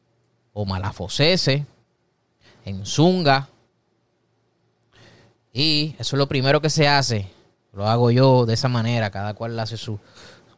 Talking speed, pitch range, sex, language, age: 125 wpm, 110-140 Hz, male, Spanish, 20-39